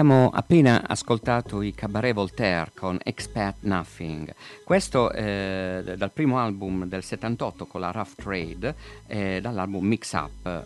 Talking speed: 135 wpm